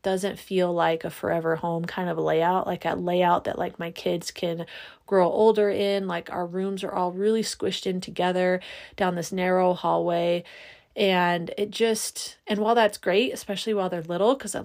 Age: 30-49